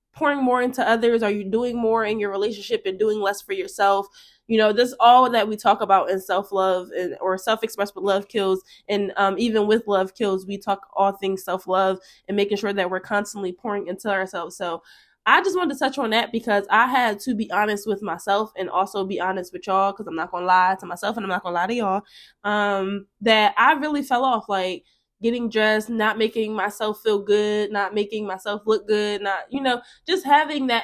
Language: English